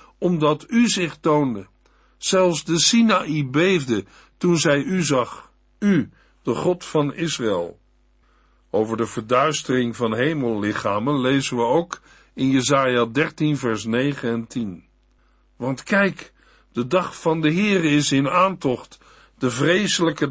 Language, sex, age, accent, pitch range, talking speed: Dutch, male, 60-79, Dutch, 130-175 Hz, 130 wpm